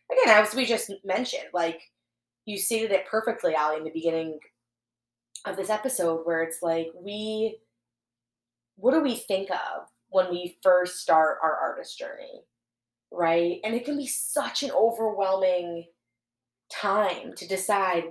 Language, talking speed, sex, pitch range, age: English, 145 wpm, female, 165-225 Hz, 20-39